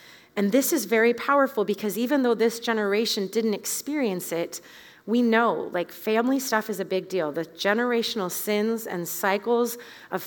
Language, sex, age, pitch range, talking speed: English, female, 30-49, 190-230 Hz, 165 wpm